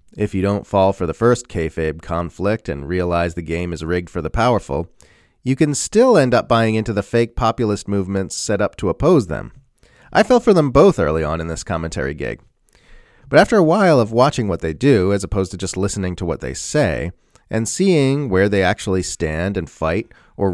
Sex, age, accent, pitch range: male, 30-49, American, 90-120 Hz